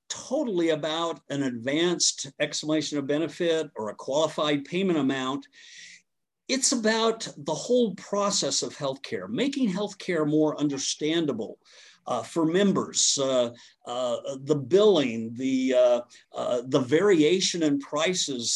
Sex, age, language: male, 50-69, English